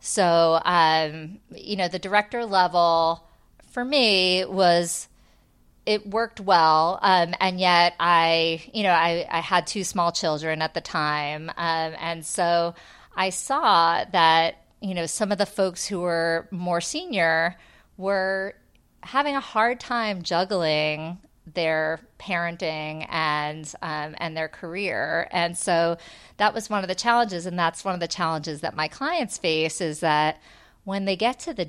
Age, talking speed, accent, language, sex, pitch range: 30-49, 155 wpm, American, English, female, 160-195 Hz